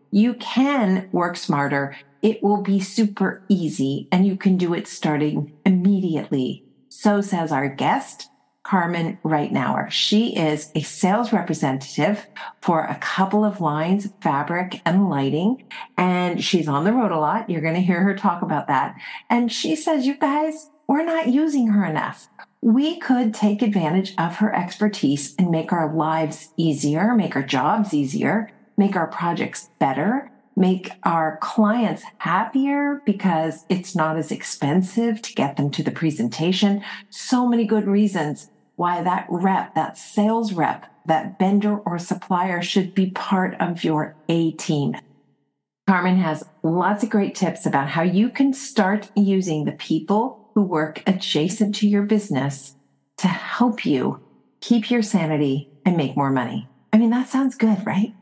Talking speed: 155 wpm